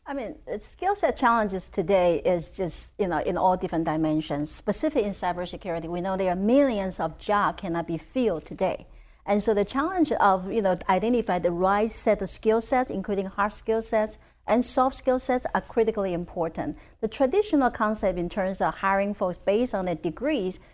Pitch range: 180-225 Hz